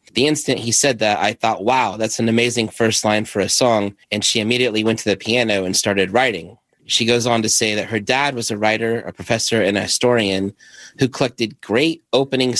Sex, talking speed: male, 220 wpm